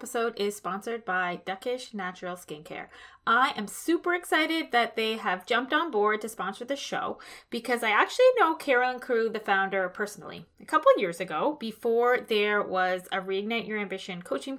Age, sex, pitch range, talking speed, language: 20-39, female, 205-270 Hz, 175 wpm, English